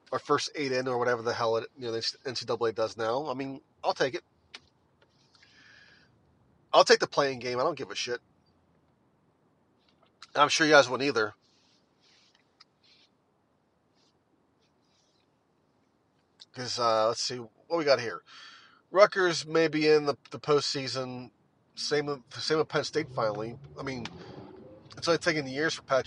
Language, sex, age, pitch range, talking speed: English, male, 30-49, 125-150 Hz, 150 wpm